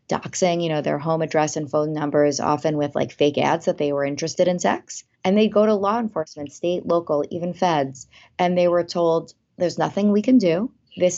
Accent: American